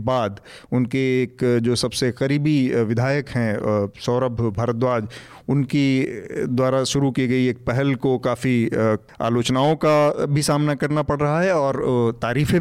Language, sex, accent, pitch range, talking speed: Hindi, male, native, 120-135 Hz, 140 wpm